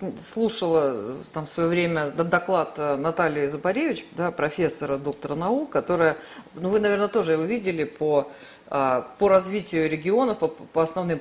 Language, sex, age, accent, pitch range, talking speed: Russian, female, 40-59, native, 160-225 Hz, 140 wpm